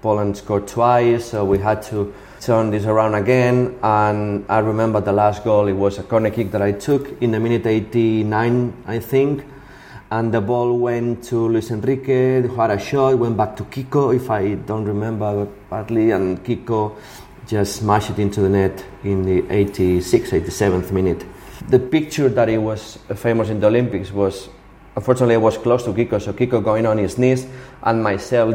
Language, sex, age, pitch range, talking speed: English, male, 30-49, 100-120 Hz, 185 wpm